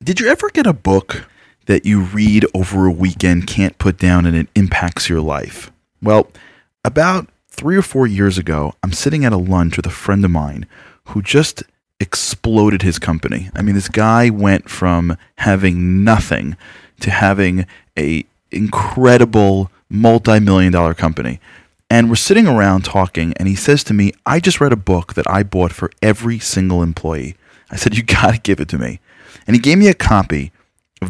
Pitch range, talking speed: 90-115 Hz, 180 wpm